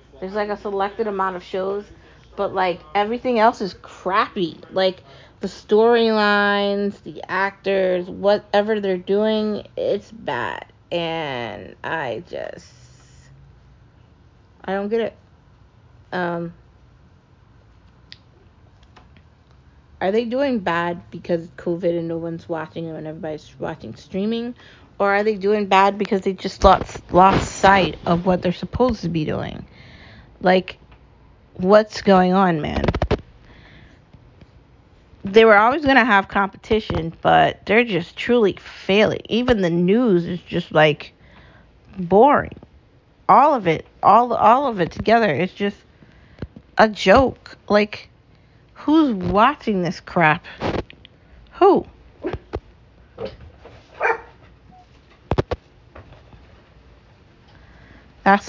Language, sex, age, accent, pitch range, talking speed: English, female, 30-49, American, 165-210 Hz, 110 wpm